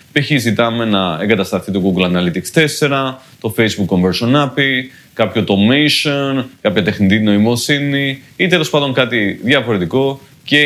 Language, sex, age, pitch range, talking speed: Greek, male, 30-49, 105-140 Hz, 130 wpm